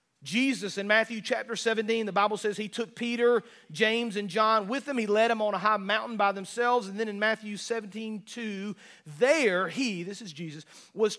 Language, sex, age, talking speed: English, male, 40-59, 195 wpm